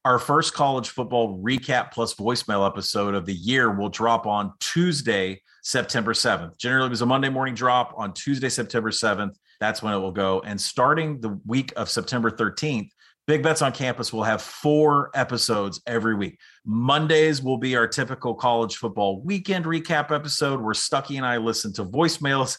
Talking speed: 180 wpm